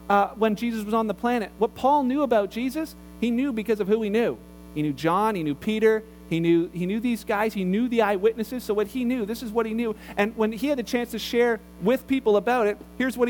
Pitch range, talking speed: 200-240 Hz, 260 wpm